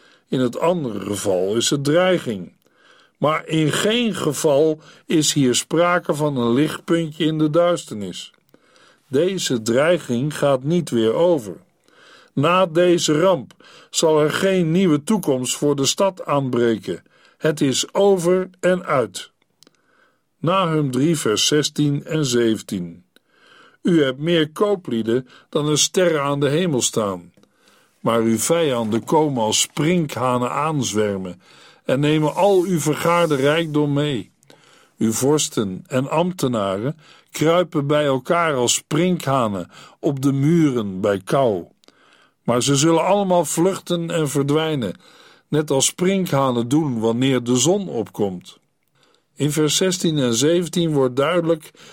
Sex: male